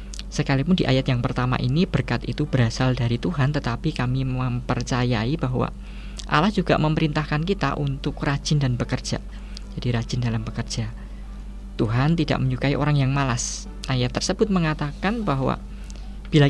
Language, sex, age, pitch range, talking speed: Indonesian, female, 20-39, 125-150 Hz, 140 wpm